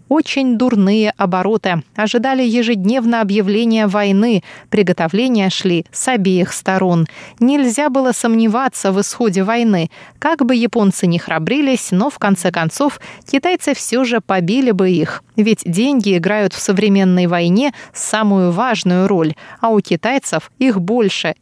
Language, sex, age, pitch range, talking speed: Russian, female, 20-39, 185-240 Hz, 130 wpm